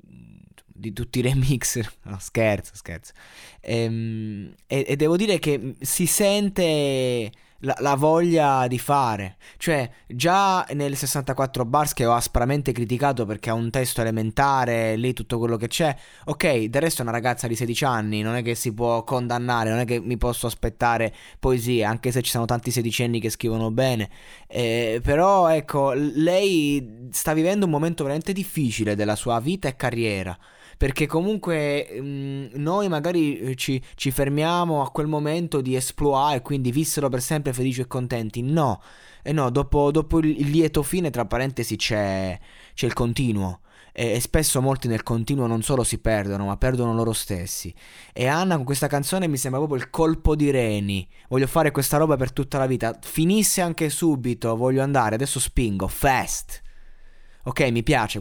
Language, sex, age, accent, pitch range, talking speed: Italian, male, 20-39, native, 115-145 Hz, 170 wpm